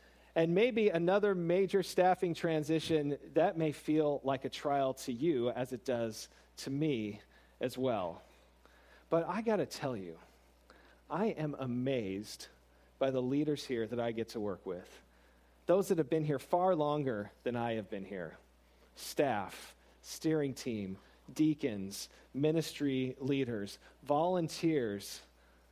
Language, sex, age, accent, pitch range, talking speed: English, male, 40-59, American, 120-180 Hz, 140 wpm